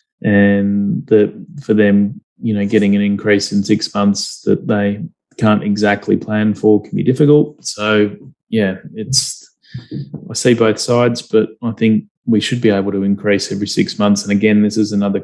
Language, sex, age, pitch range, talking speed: English, male, 20-39, 100-115 Hz, 175 wpm